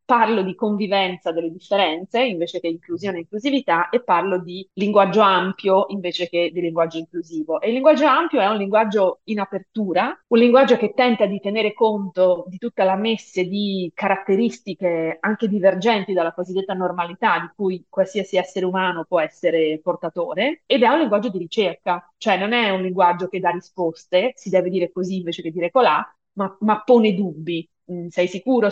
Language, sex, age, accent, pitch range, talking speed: Italian, female, 30-49, native, 175-205 Hz, 175 wpm